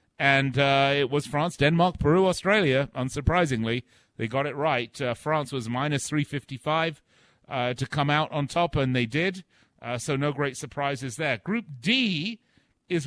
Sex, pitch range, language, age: male, 125-170 Hz, English, 40-59